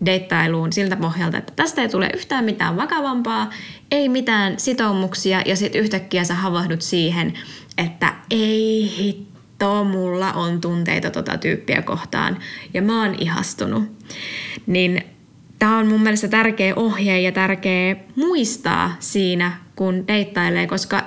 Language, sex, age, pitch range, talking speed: Finnish, female, 20-39, 175-205 Hz, 130 wpm